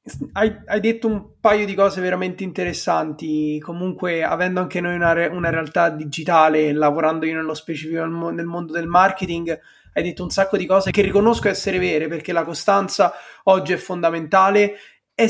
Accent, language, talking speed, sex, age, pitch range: native, Italian, 170 wpm, male, 20-39, 170-215 Hz